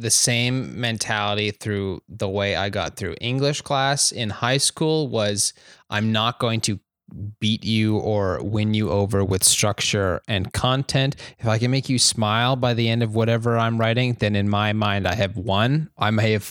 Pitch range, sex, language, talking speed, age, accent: 100-120 Hz, male, English, 190 wpm, 20-39, American